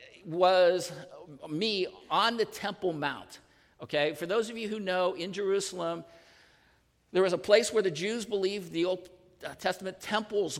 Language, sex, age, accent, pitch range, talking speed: English, male, 50-69, American, 145-185 Hz, 155 wpm